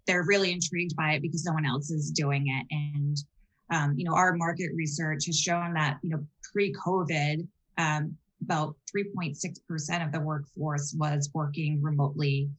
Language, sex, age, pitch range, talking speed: English, female, 20-39, 150-175 Hz, 155 wpm